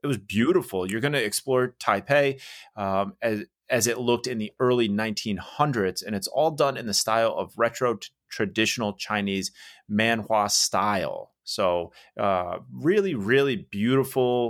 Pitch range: 100-125 Hz